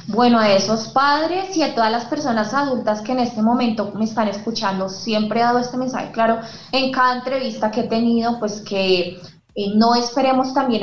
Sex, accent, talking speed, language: female, Colombian, 195 wpm, Spanish